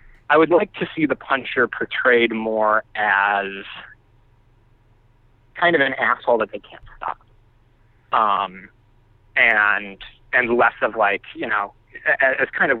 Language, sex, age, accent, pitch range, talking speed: English, male, 30-49, American, 110-125 Hz, 140 wpm